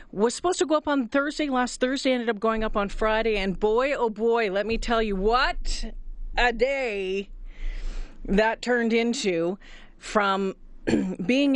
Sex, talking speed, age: female, 160 wpm, 40-59